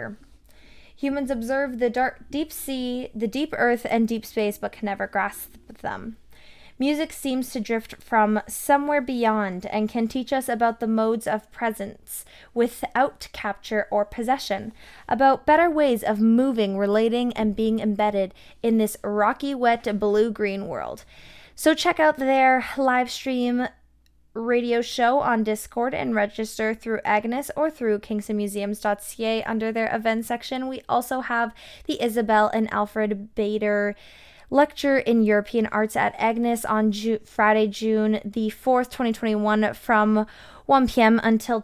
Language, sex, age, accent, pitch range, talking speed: English, female, 20-39, American, 215-255 Hz, 145 wpm